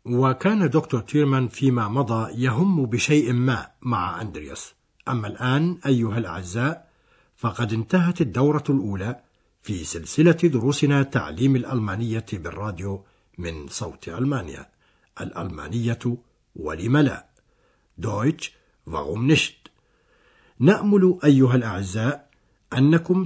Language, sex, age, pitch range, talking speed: Arabic, male, 60-79, 110-145 Hz, 90 wpm